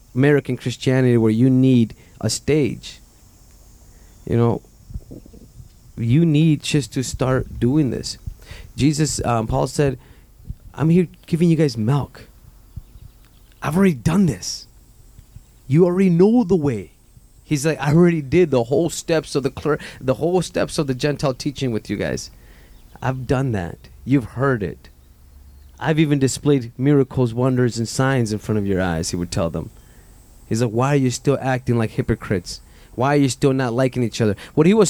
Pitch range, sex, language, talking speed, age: 115-155 Hz, male, English, 170 wpm, 30-49